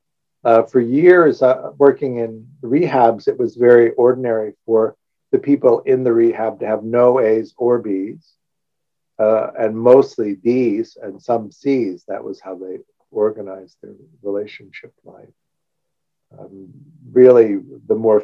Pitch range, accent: 110-145 Hz, American